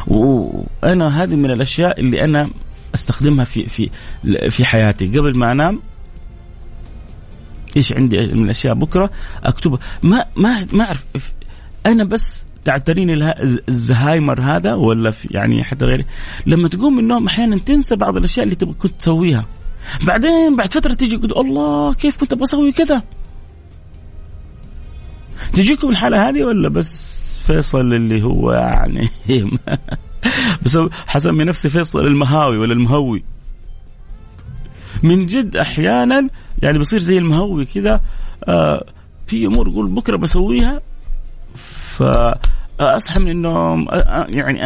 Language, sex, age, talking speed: Arabic, male, 30-49, 125 wpm